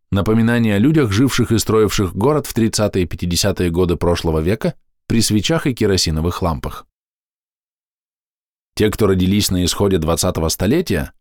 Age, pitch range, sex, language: 20-39, 90-125 Hz, male, Russian